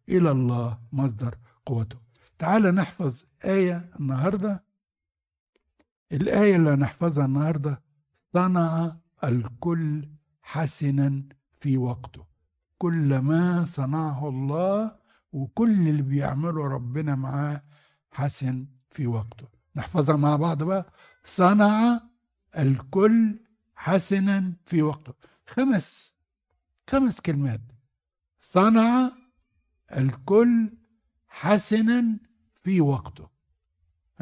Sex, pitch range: male, 120-180 Hz